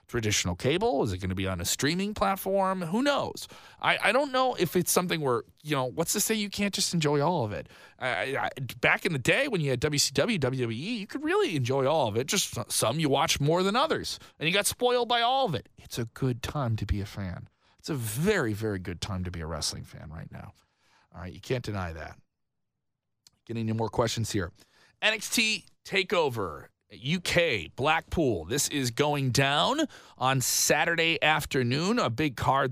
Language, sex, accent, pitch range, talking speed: English, male, American, 115-170 Hz, 205 wpm